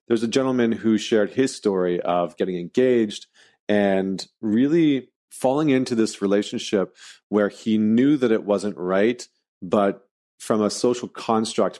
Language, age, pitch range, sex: English, 40-59, 95-115 Hz, male